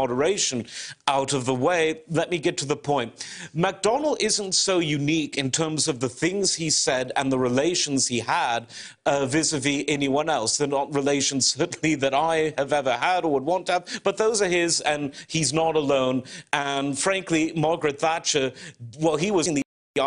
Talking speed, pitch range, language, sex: 190 wpm, 135-170 Hz, English, male